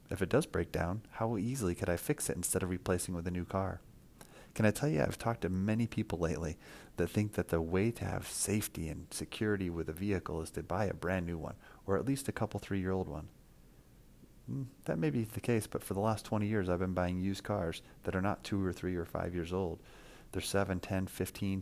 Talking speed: 240 wpm